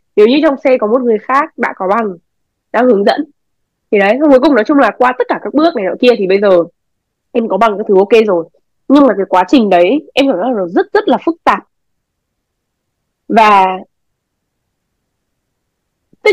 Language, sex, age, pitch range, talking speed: Vietnamese, female, 20-39, 190-260 Hz, 205 wpm